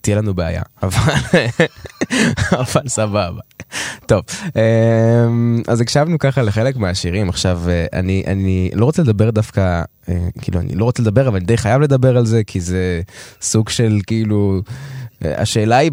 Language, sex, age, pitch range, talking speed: Hebrew, male, 20-39, 90-125 Hz, 145 wpm